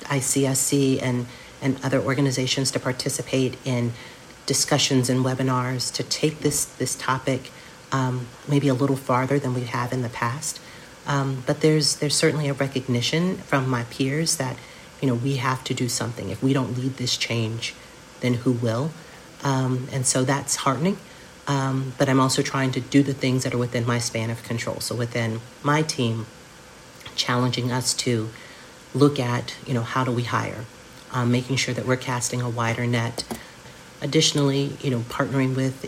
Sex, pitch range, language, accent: female, 125-135 Hz, English, American